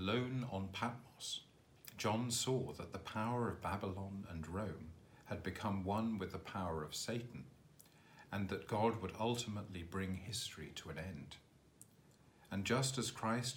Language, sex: English, male